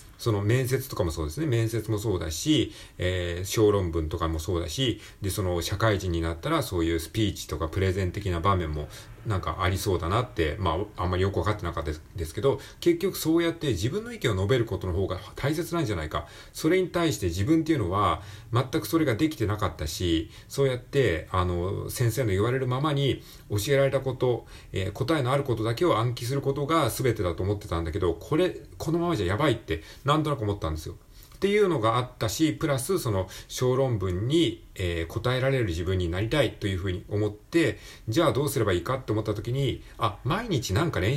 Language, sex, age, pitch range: Japanese, male, 40-59, 90-135 Hz